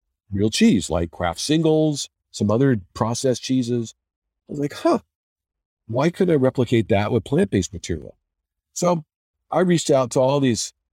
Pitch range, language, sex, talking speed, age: 85-125 Hz, English, male, 155 wpm, 50-69